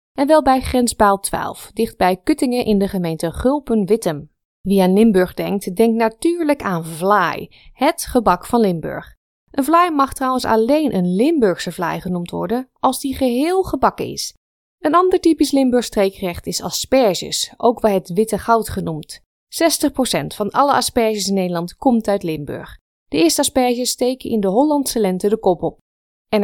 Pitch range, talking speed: 190-275 Hz, 160 wpm